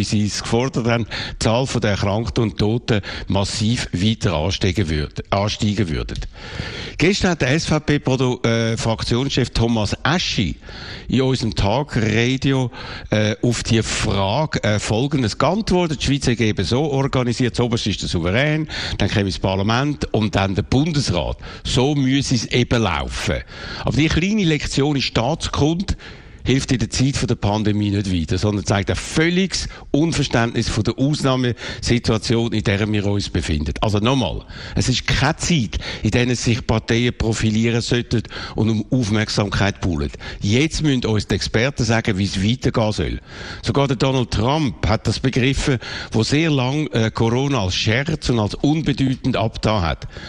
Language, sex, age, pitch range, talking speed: German, male, 60-79, 105-130 Hz, 155 wpm